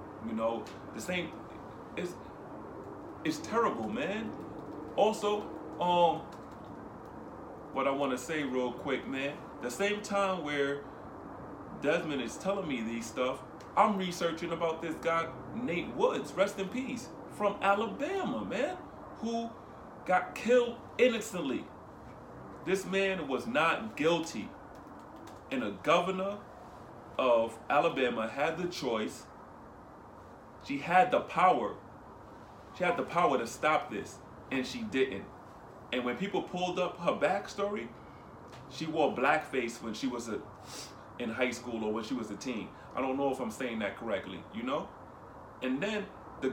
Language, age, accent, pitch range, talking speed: English, 30-49, American, 145-215 Hz, 140 wpm